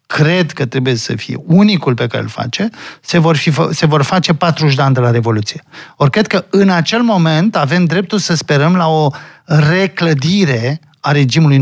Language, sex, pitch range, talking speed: Romanian, male, 135-180 Hz, 190 wpm